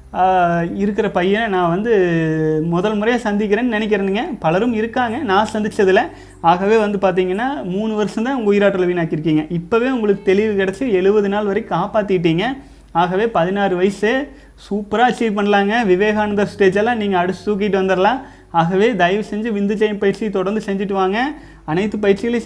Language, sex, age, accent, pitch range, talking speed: Tamil, male, 30-49, native, 185-215 Hz, 135 wpm